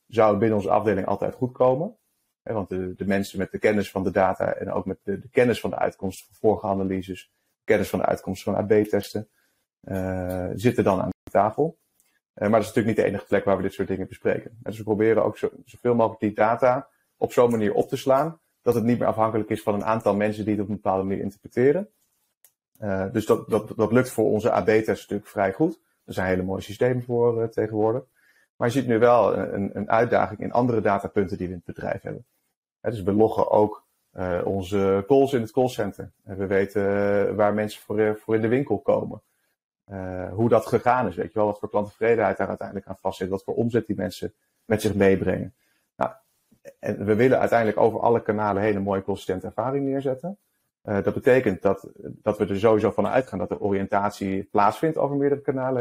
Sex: male